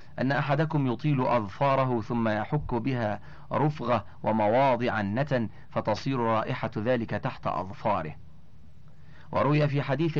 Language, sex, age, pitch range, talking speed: Arabic, male, 40-59, 110-140 Hz, 105 wpm